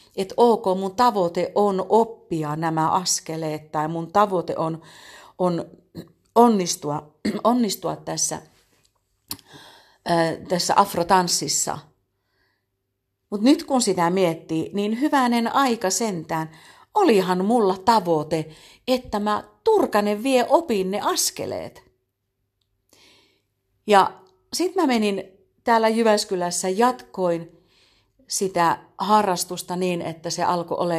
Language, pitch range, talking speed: Finnish, 160-225 Hz, 100 wpm